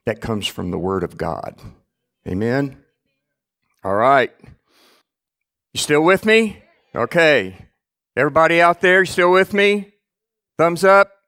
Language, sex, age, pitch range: English, male, 50-69, 125-170 Hz